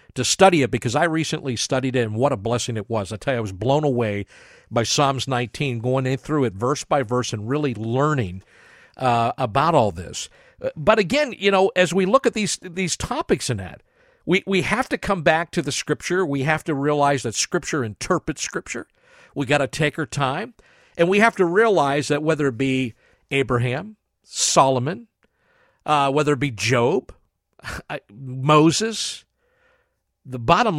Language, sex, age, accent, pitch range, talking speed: English, male, 50-69, American, 125-175 Hz, 180 wpm